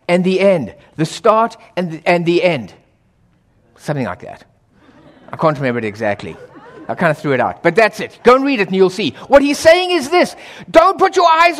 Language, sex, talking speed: English, male, 215 wpm